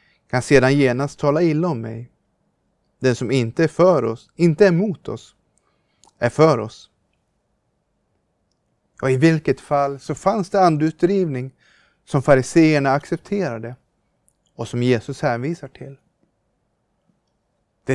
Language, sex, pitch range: Swedish, male, 130-165 Hz